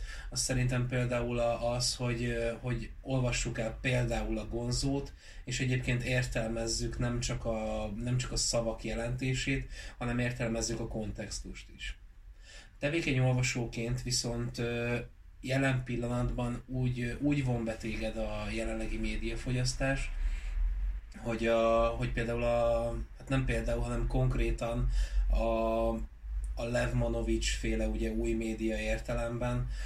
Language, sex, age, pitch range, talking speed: Hungarian, male, 20-39, 110-120 Hz, 115 wpm